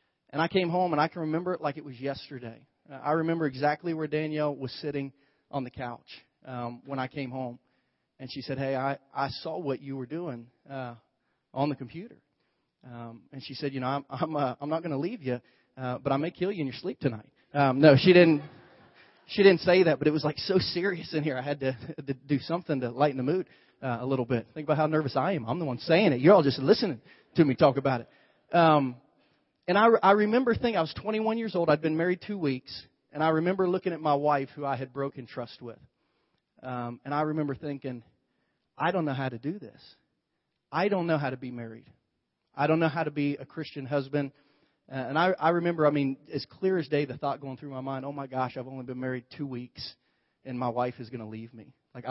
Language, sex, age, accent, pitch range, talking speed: English, male, 30-49, American, 130-160 Hz, 245 wpm